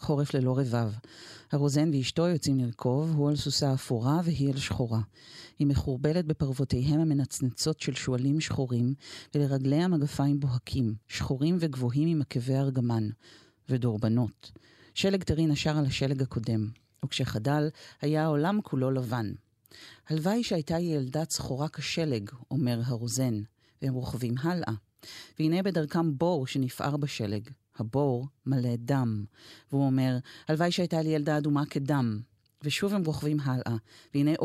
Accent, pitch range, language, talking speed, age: native, 120-150 Hz, Hebrew, 125 wpm, 40-59